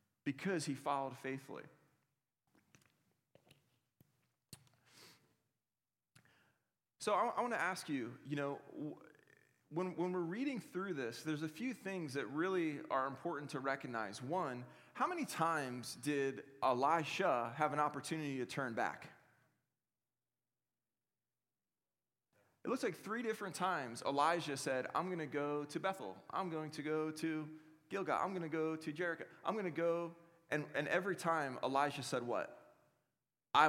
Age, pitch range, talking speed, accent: 30-49, 135-175 Hz, 140 wpm, American